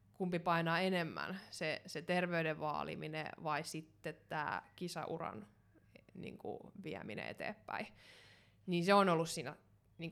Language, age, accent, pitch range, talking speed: Finnish, 20-39, native, 160-185 Hz, 120 wpm